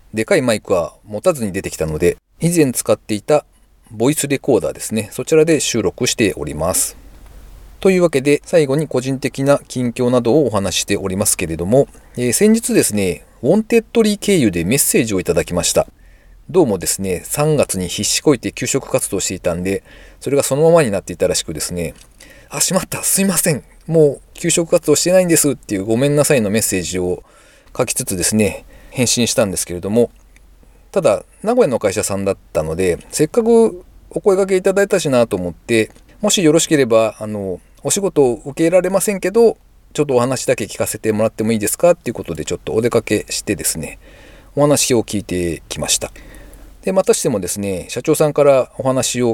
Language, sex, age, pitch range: Japanese, male, 40-59, 95-155 Hz